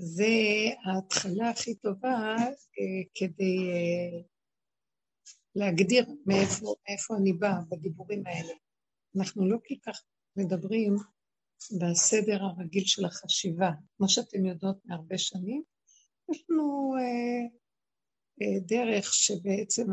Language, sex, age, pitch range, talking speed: Hebrew, female, 60-79, 185-225 Hz, 100 wpm